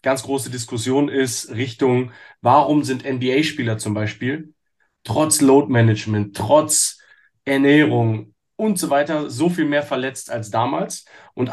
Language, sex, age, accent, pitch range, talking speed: German, male, 30-49, German, 125-155 Hz, 130 wpm